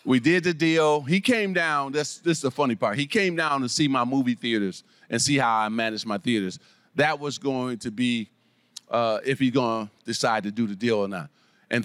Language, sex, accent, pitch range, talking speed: English, male, American, 125-165 Hz, 230 wpm